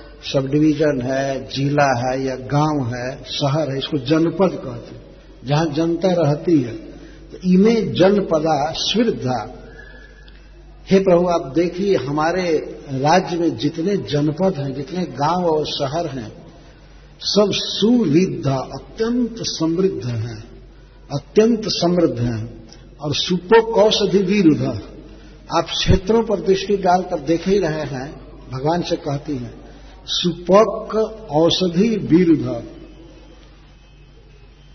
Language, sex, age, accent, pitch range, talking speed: Hindi, male, 60-79, native, 145-185 Hz, 110 wpm